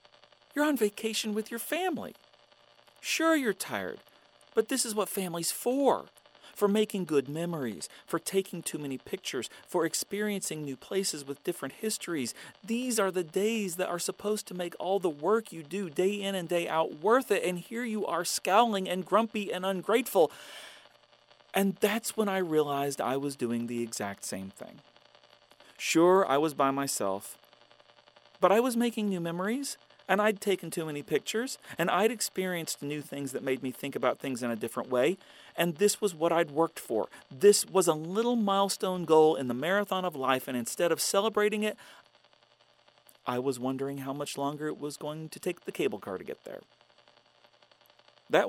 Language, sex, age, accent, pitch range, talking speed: English, male, 40-59, American, 130-205 Hz, 180 wpm